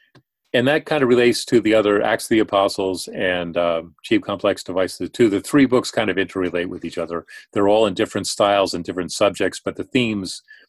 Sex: male